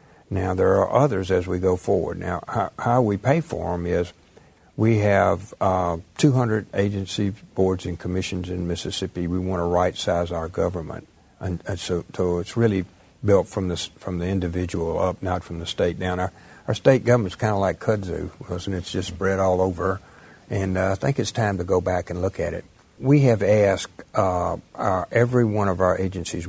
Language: English